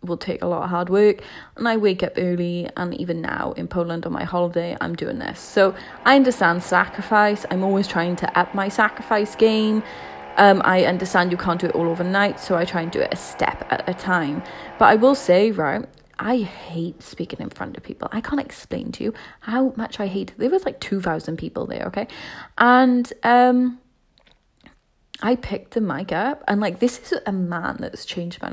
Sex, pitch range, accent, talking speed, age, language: female, 180-240 Hz, British, 210 wpm, 30-49, English